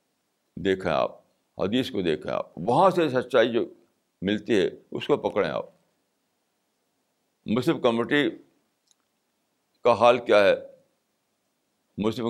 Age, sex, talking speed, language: 60-79, male, 110 wpm, Urdu